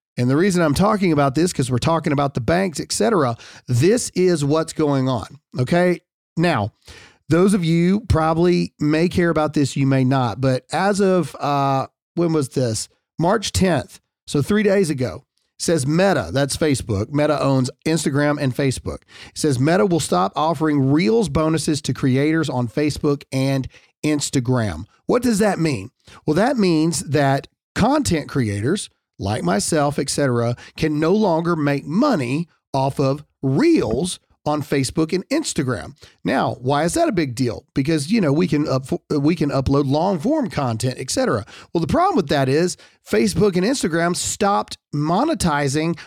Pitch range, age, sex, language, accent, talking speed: 140-175 Hz, 40-59, male, English, American, 165 wpm